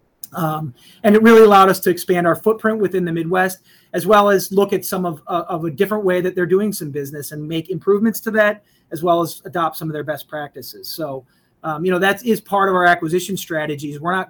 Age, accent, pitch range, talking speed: 30-49, American, 145-185 Hz, 240 wpm